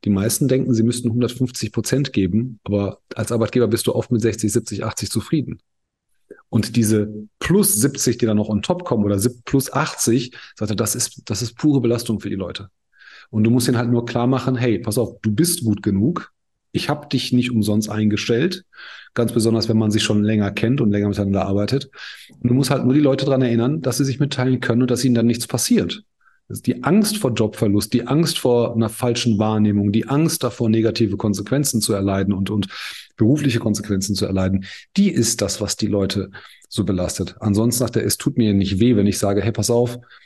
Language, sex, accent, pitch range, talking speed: German, male, German, 105-125 Hz, 210 wpm